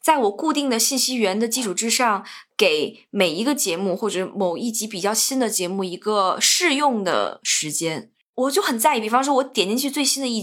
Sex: female